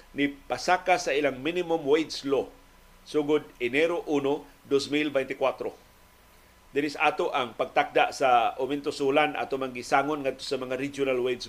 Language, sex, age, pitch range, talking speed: Filipino, male, 40-59, 130-160 Hz, 120 wpm